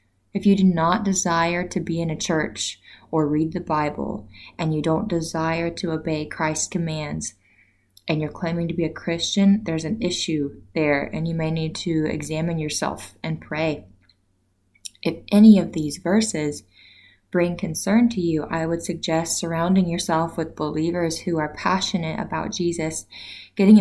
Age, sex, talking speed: 20-39, female, 160 wpm